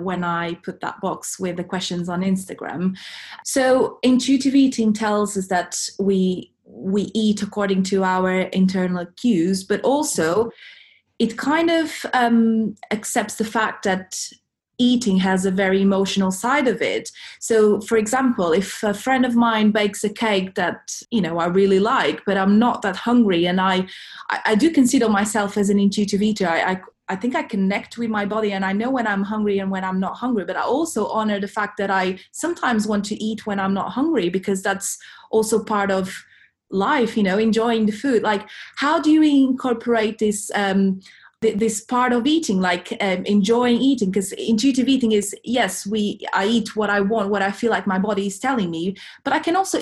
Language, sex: Portuguese, female